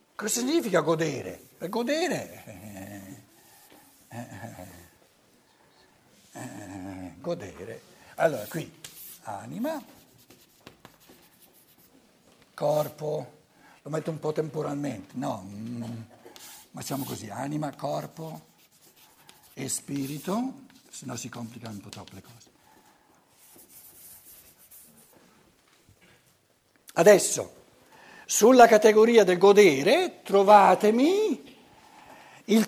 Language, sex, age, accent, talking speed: Italian, male, 60-79, native, 70 wpm